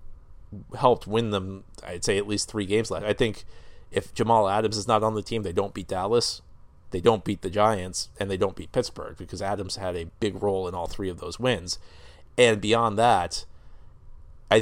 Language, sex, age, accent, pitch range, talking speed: English, male, 30-49, American, 95-115 Hz, 205 wpm